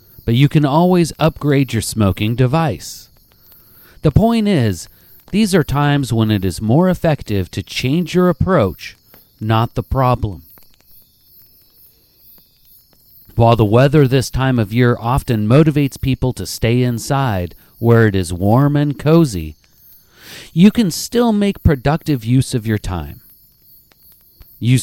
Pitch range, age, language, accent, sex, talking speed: 110-150 Hz, 40-59, English, American, male, 135 wpm